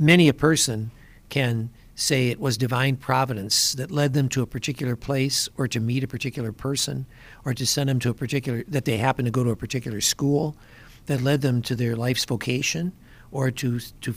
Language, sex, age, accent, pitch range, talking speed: English, male, 60-79, American, 115-140 Hz, 205 wpm